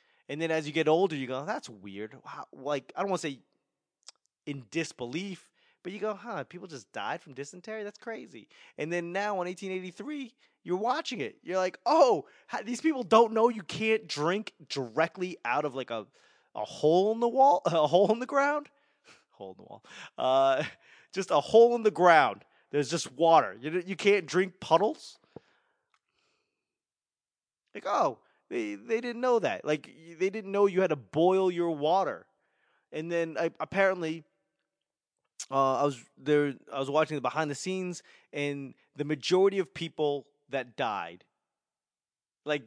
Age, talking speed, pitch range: 20-39, 170 wpm, 145-220 Hz